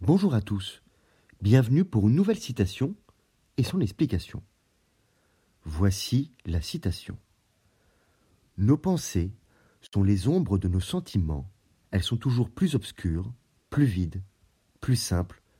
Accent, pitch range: French, 95-120 Hz